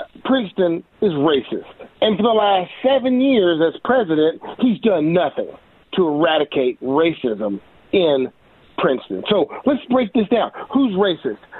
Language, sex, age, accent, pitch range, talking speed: English, male, 40-59, American, 150-210 Hz, 135 wpm